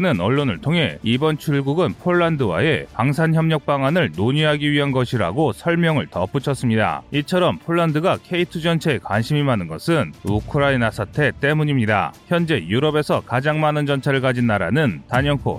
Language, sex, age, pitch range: Korean, male, 30-49, 125-160 Hz